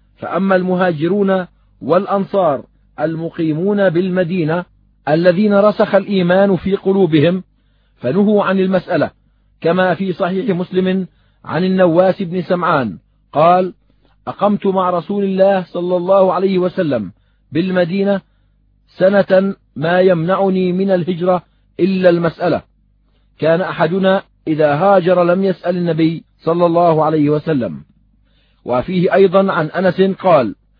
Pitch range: 170-195 Hz